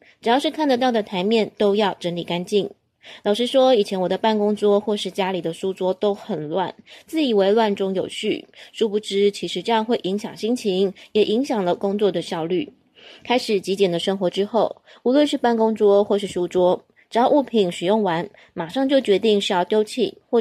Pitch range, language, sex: 185-230 Hz, Chinese, female